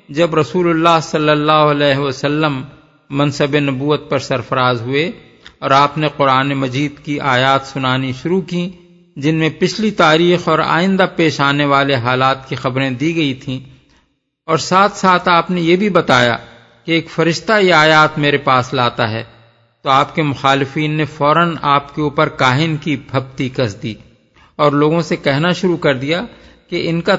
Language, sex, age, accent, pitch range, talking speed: English, male, 50-69, Indian, 135-170 Hz, 150 wpm